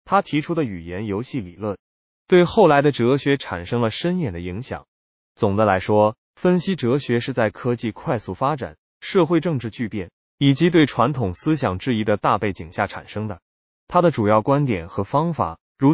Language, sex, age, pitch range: Chinese, male, 20-39, 100-145 Hz